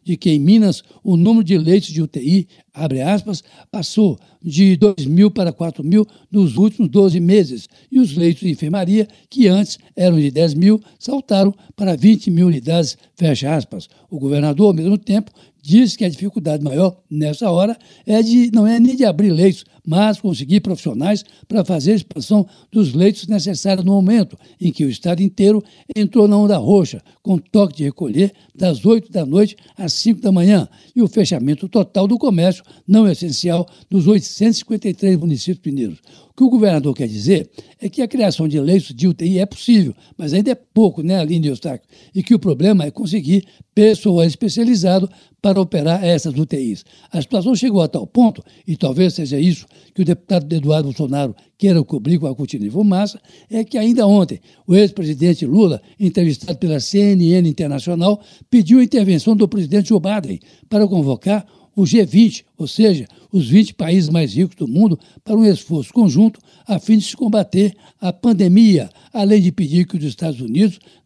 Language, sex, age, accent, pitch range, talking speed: Portuguese, male, 60-79, Brazilian, 170-210 Hz, 175 wpm